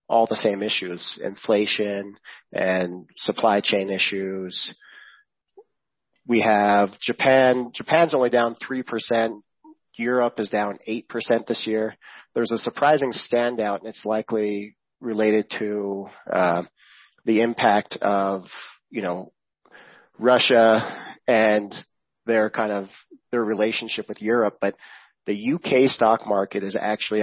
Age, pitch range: 30-49, 105-120 Hz